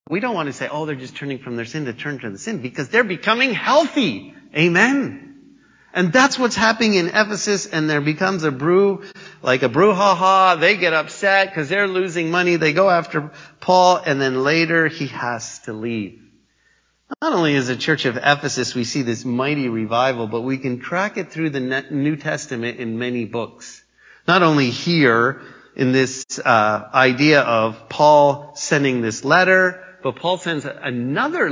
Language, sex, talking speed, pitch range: English, male, 180 wpm, 125-180 Hz